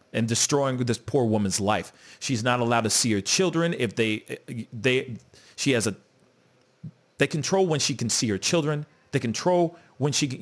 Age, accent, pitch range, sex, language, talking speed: 40-59, American, 115-190 Hz, male, English, 185 wpm